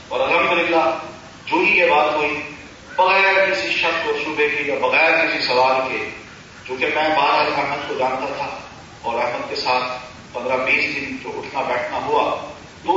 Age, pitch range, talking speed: 40-59, 130-175 Hz, 170 wpm